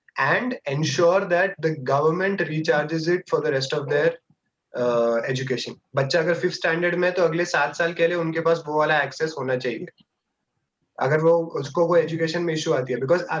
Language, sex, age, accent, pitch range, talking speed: Hindi, male, 20-39, native, 145-175 Hz, 195 wpm